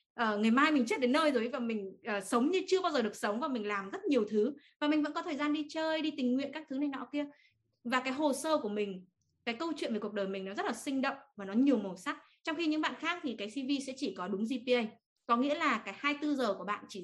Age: 20-39